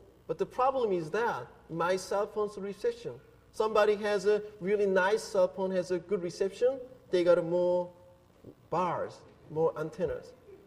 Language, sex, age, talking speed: English, male, 50-69, 150 wpm